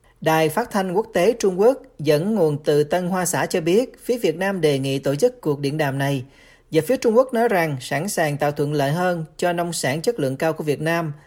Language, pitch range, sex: Vietnamese, 150-205 Hz, male